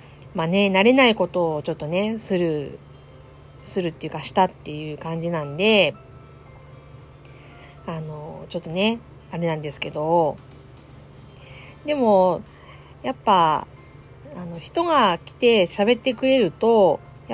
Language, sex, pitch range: Japanese, female, 160-230 Hz